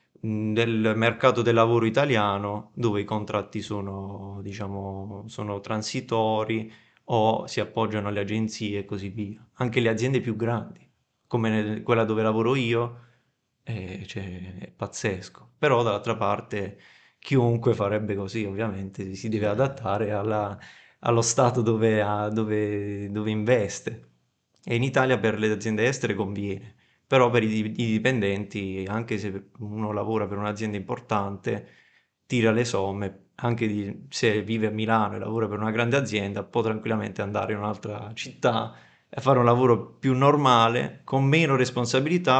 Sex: male